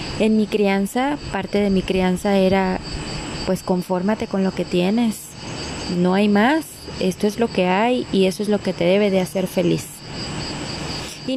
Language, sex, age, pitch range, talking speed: Spanish, female, 20-39, 185-230 Hz, 175 wpm